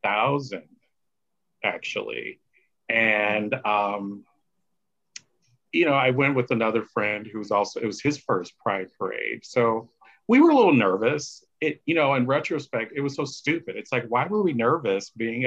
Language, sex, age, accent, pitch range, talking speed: English, male, 40-59, American, 115-135 Hz, 165 wpm